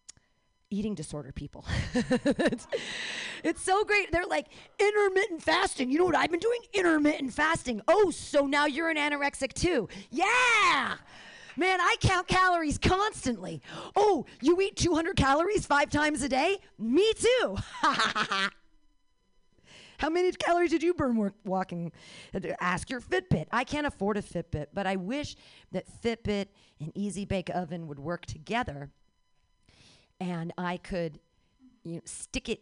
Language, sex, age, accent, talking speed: English, female, 40-59, American, 140 wpm